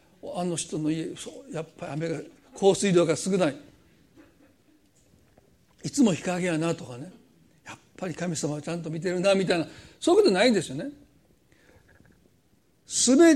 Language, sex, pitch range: Japanese, male, 180-255 Hz